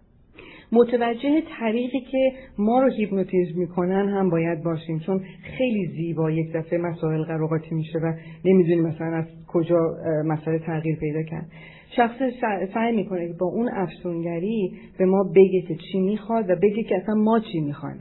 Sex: female